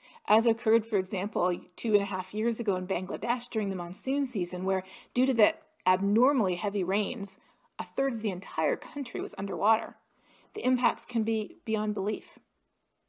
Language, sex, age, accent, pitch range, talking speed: English, female, 40-59, American, 200-245 Hz, 170 wpm